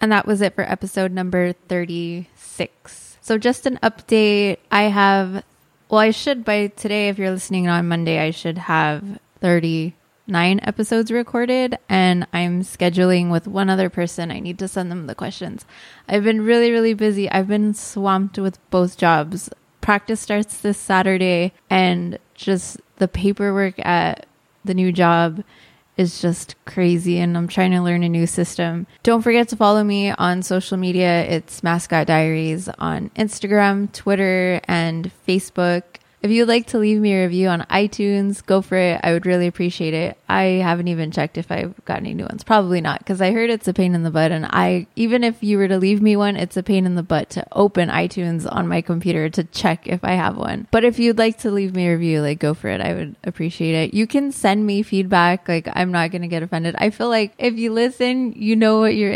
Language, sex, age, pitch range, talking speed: English, female, 20-39, 175-210 Hz, 200 wpm